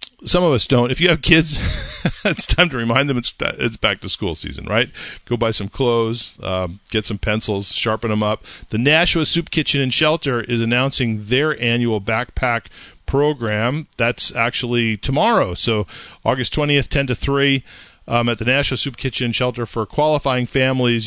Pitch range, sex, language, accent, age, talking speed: 110-145 Hz, male, English, American, 40-59, 175 wpm